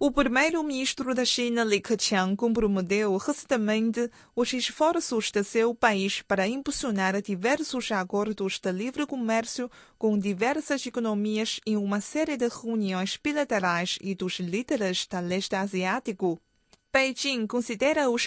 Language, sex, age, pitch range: Chinese, female, 20-39, 195-250 Hz